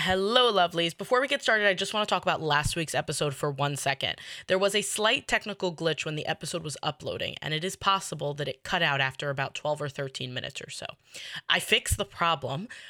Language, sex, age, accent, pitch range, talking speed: English, female, 20-39, American, 150-200 Hz, 230 wpm